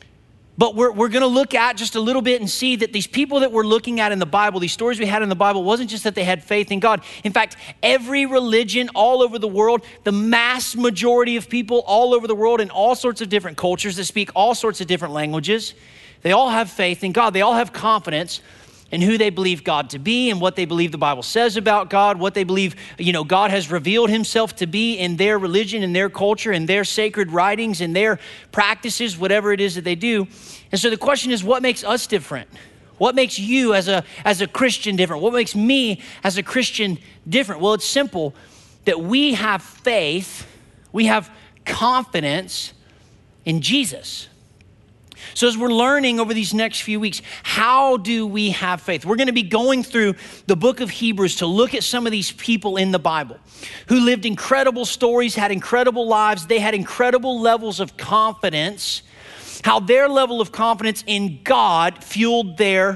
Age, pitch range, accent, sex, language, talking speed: 30-49, 185-235 Hz, American, male, English, 205 wpm